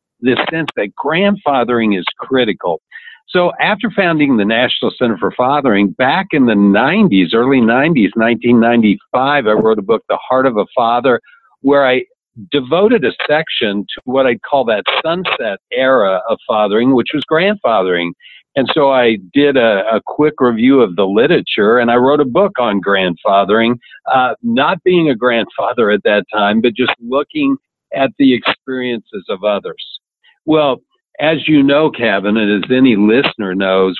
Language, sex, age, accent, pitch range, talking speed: English, male, 60-79, American, 105-145 Hz, 160 wpm